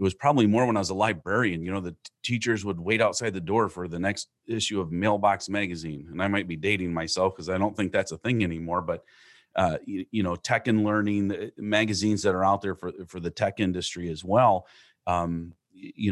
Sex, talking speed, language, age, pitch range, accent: male, 225 wpm, English, 30-49, 85-105 Hz, American